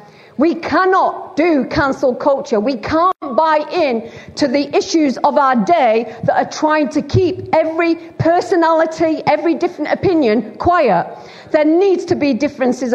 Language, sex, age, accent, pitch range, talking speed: English, female, 50-69, British, 240-345 Hz, 145 wpm